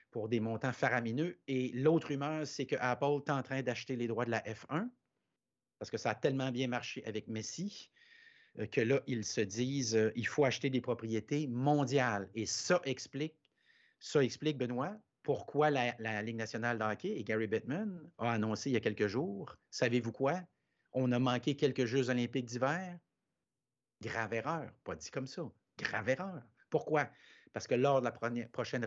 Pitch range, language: 115-155 Hz, French